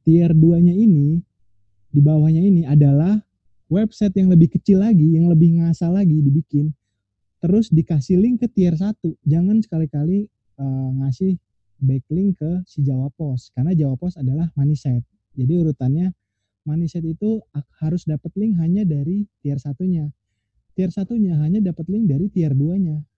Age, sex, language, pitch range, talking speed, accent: 20-39, male, Indonesian, 135-180 Hz, 140 wpm, native